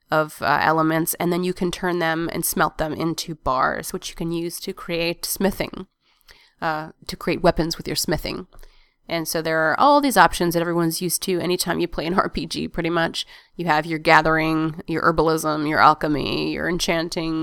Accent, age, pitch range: American, 30-49, 160-190 Hz